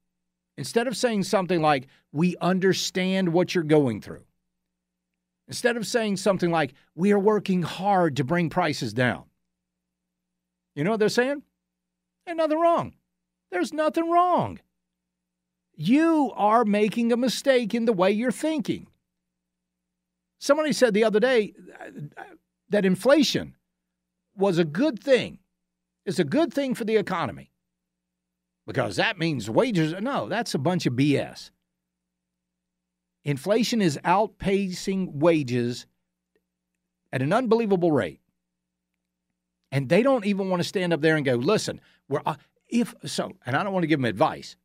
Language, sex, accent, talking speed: English, male, American, 140 wpm